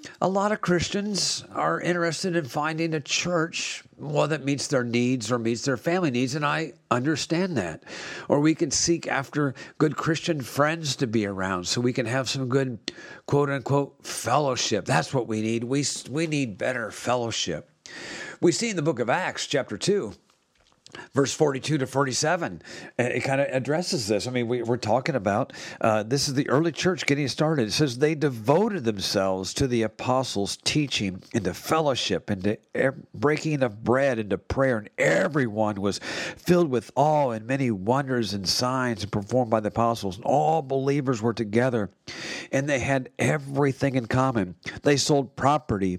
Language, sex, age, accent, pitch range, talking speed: English, male, 50-69, American, 115-150 Hz, 170 wpm